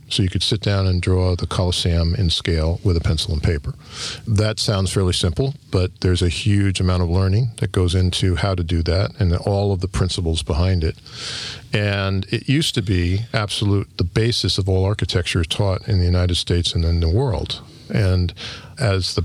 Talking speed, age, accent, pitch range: 200 wpm, 50-69, American, 90-110 Hz